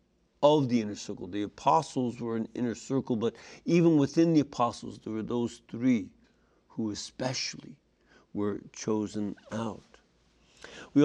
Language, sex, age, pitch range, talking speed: English, male, 60-79, 115-150 Hz, 135 wpm